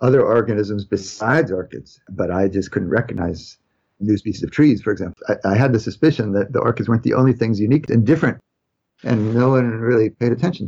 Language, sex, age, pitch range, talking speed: English, male, 50-69, 100-120 Hz, 200 wpm